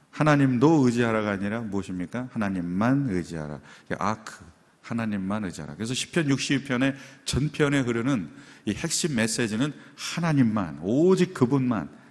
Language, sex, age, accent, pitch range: Korean, male, 40-59, native, 95-140 Hz